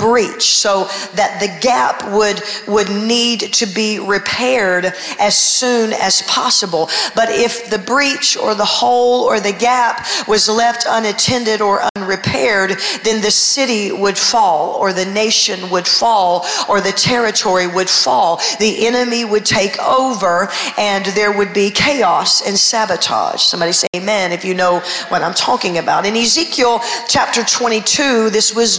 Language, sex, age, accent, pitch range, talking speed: English, female, 40-59, American, 205-235 Hz, 150 wpm